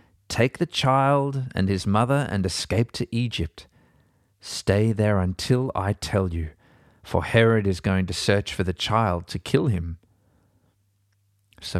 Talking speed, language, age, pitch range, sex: 145 wpm, English, 40-59, 95-120 Hz, male